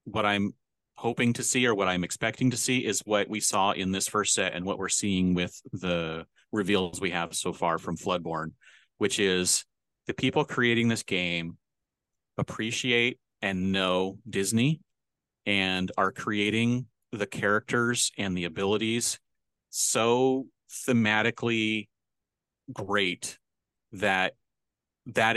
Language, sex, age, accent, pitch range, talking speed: English, male, 30-49, American, 90-110 Hz, 130 wpm